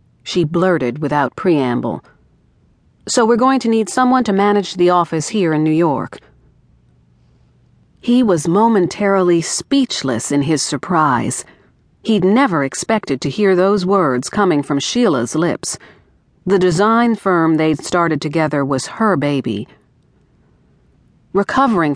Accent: American